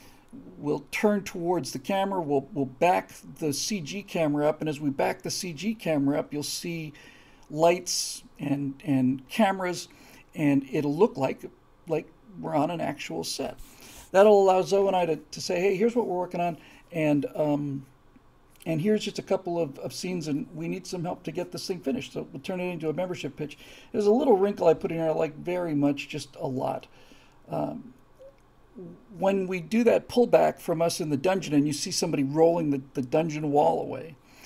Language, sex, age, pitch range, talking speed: English, male, 50-69, 145-190 Hz, 195 wpm